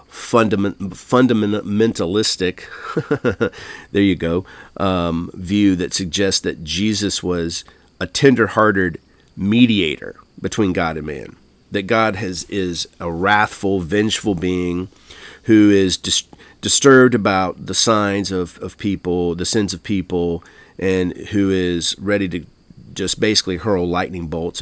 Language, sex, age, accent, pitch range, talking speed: English, male, 40-59, American, 85-110 Hz, 125 wpm